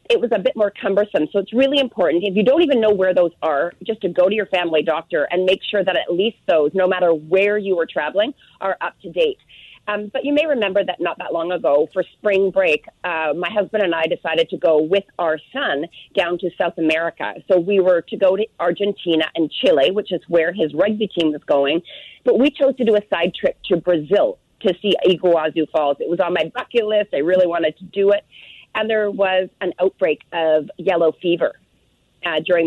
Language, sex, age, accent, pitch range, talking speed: English, female, 30-49, American, 165-210 Hz, 225 wpm